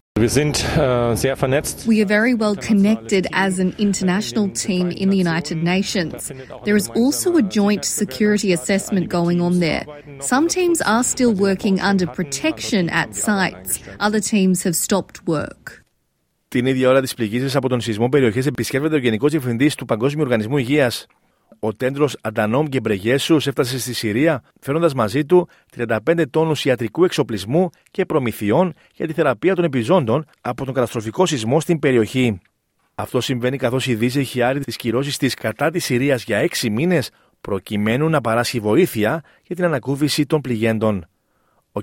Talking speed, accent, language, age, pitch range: 140 wpm, Australian, Greek, 40-59, 120-170 Hz